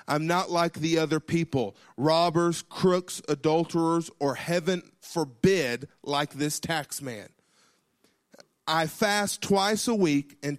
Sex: male